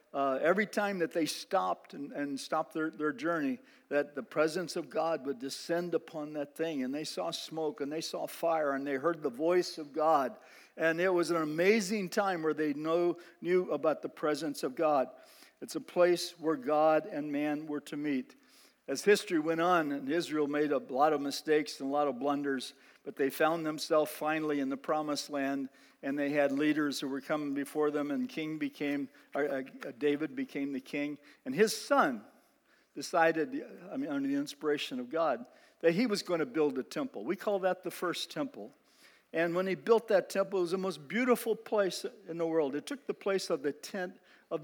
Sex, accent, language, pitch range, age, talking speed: male, American, English, 150-190 Hz, 50-69, 205 wpm